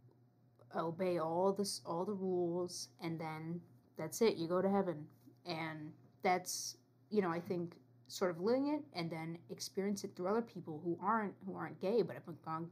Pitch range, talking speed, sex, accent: 125-190 Hz, 185 wpm, female, American